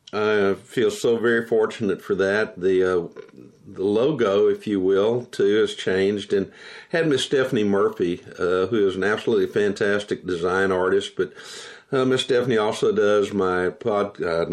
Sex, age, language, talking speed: male, 50-69, English, 160 wpm